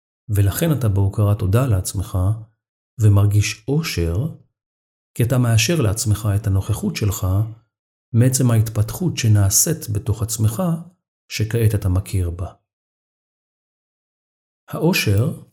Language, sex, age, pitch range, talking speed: Hebrew, male, 40-59, 100-130 Hz, 95 wpm